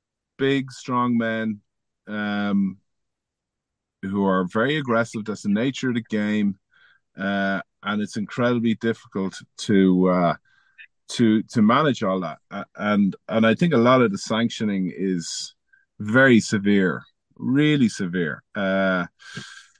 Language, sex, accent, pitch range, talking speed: English, male, Irish, 110-140 Hz, 125 wpm